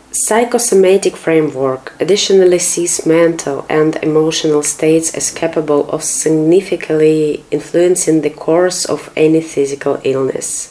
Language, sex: English, female